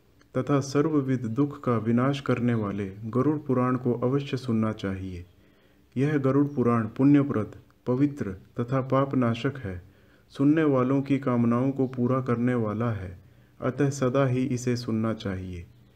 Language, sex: Hindi, male